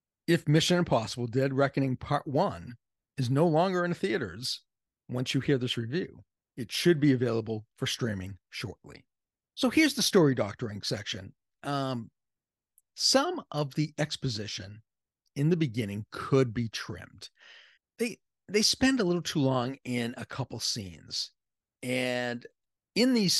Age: 40-59